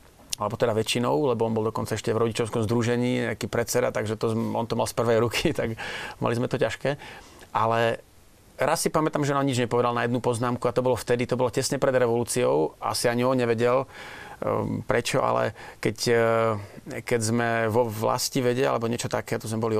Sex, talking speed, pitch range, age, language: male, 195 wpm, 110-130 Hz, 30-49, Slovak